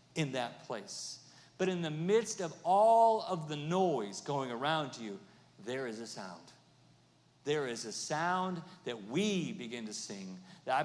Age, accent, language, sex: 40-59, American, English, male